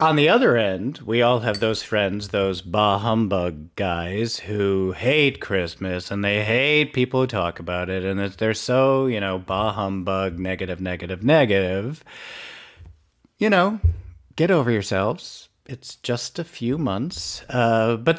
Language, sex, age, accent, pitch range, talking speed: English, male, 40-59, American, 100-140 Hz, 150 wpm